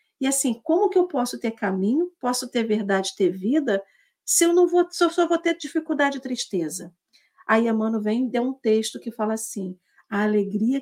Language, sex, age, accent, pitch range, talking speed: Portuguese, female, 50-69, Brazilian, 210-275 Hz, 205 wpm